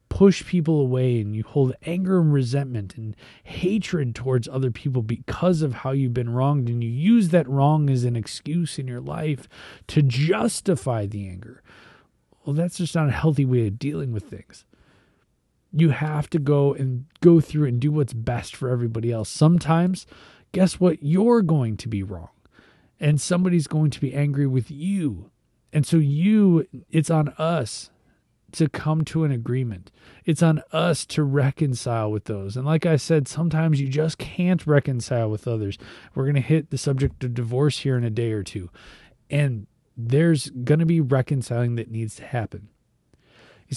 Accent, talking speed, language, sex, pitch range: American, 180 wpm, English, male, 120-155 Hz